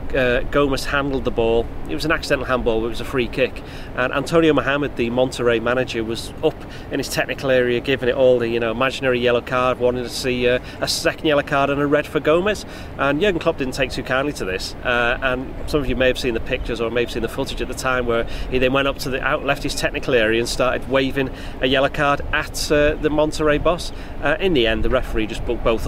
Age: 30-49